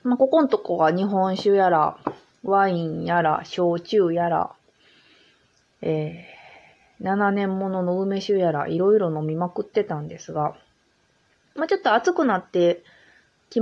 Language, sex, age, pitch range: Japanese, female, 20-39, 170-235 Hz